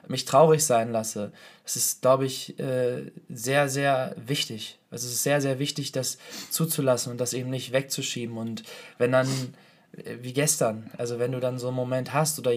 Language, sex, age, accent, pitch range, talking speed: German, male, 20-39, German, 125-160 Hz, 180 wpm